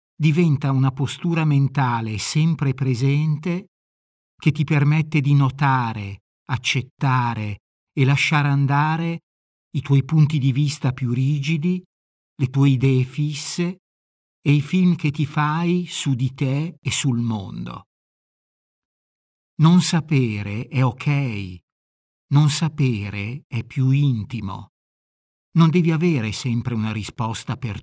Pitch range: 120-150 Hz